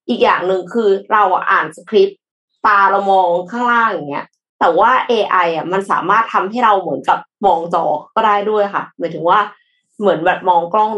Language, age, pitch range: Thai, 20-39, 180-235 Hz